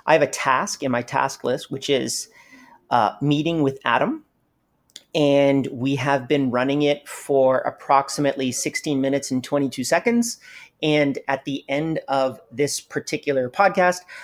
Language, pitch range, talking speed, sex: English, 130-160 Hz, 150 wpm, male